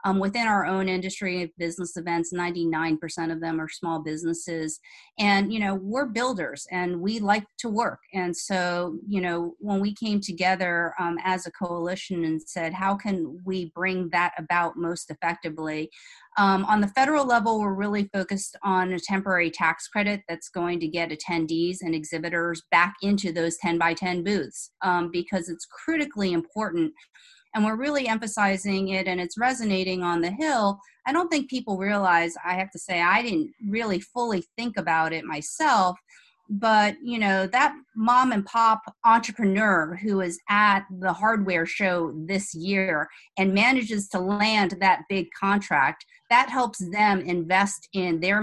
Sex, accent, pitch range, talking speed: female, American, 170-210 Hz, 165 wpm